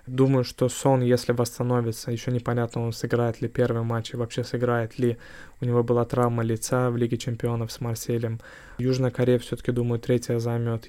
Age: 20-39